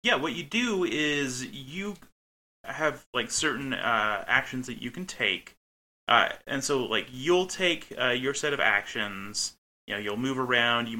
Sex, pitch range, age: male, 105-140 Hz, 30-49